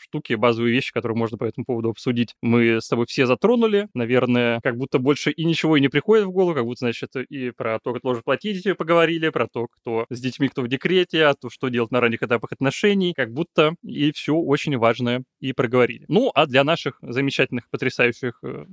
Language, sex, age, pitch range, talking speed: Russian, male, 20-39, 125-160 Hz, 210 wpm